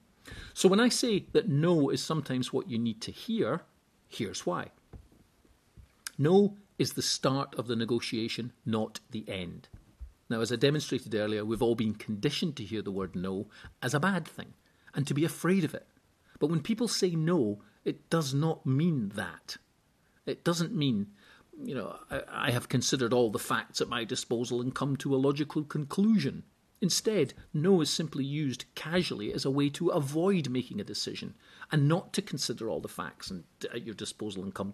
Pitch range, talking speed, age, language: 115-165 Hz, 180 wpm, 50-69, English